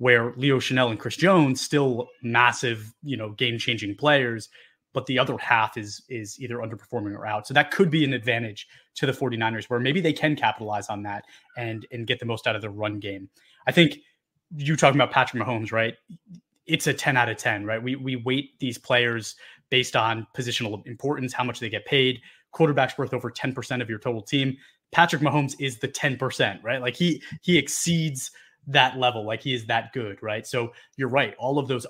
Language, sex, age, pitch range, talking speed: English, male, 20-39, 115-140 Hz, 205 wpm